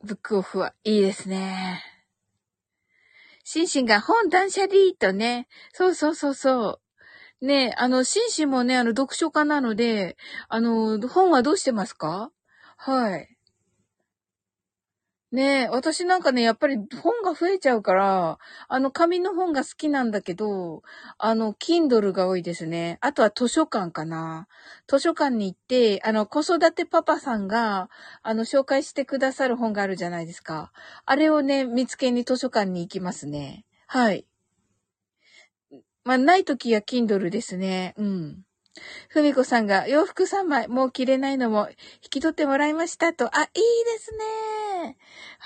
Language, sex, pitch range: Japanese, female, 200-305 Hz